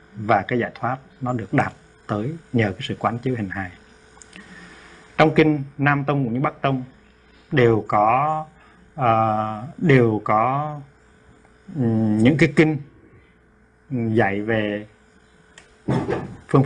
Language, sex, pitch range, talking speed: Vietnamese, male, 110-135 Hz, 120 wpm